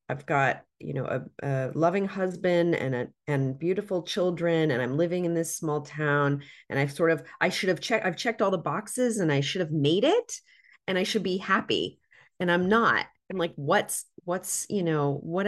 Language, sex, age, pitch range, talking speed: English, female, 30-49, 145-180 Hz, 205 wpm